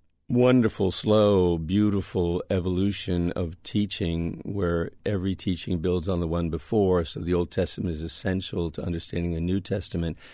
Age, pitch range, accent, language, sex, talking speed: 50-69, 85-100 Hz, American, English, male, 145 wpm